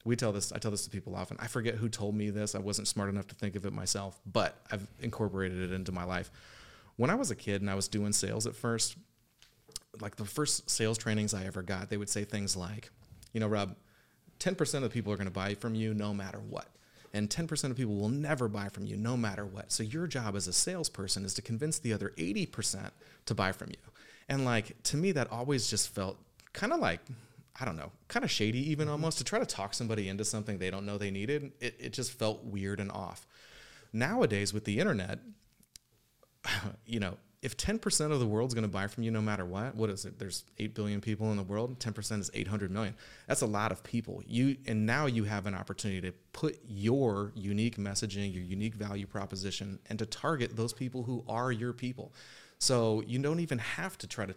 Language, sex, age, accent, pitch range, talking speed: English, male, 30-49, American, 100-120 Hz, 230 wpm